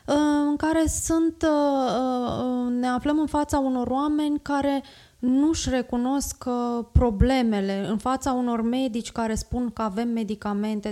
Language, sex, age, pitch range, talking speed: Romanian, female, 20-39, 220-255 Hz, 120 wpm